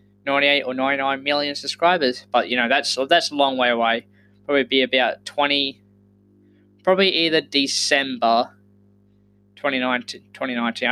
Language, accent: English, Australian